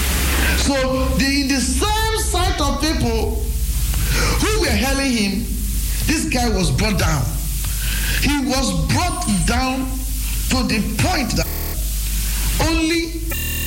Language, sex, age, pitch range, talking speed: English, male, 50-69, 190-285 Hz, 115 wpm